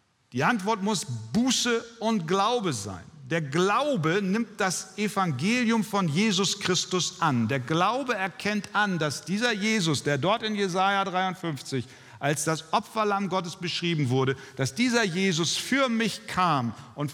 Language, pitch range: German, 145-200 Hz